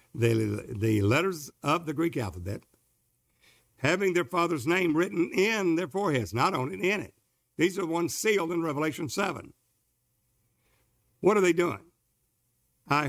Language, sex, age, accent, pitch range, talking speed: English, male, 60-79, American, 120-170 Hz, 145 wpm